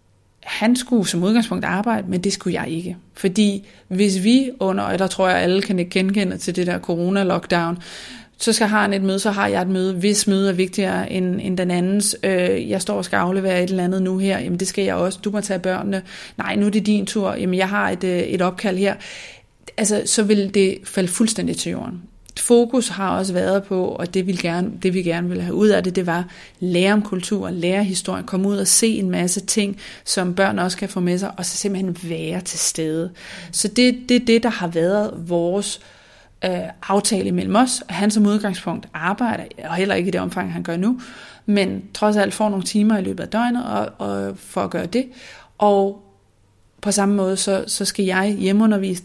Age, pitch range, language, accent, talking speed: 30-49, 180-210 Hz, Danish, native, 220 wpm